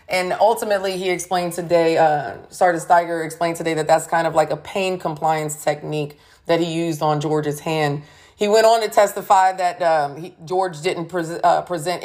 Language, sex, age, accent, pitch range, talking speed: English, female, 30-49, American, 160-195 Hz, 180 wpm